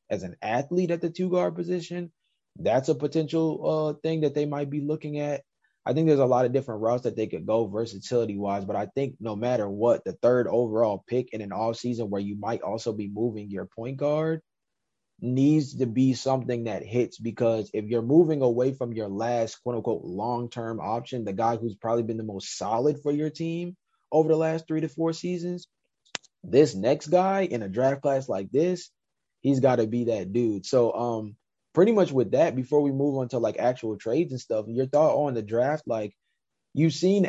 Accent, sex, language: American, male, English